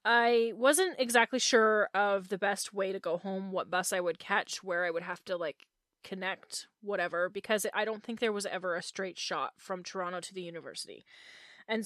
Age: 20-39